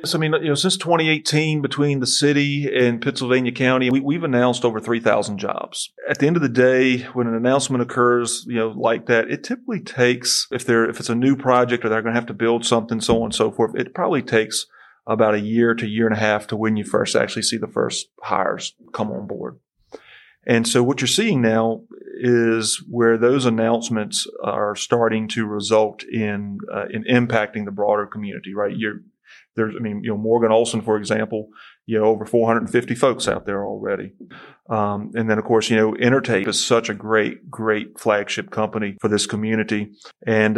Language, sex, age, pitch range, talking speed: English, male, 40-59, 110-125 Hz, 200 wpm